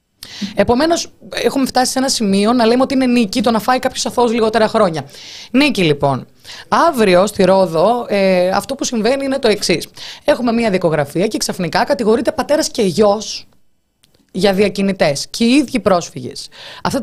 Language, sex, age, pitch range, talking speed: Greek, female, 20-39, 180-240 Hz, 160 wpm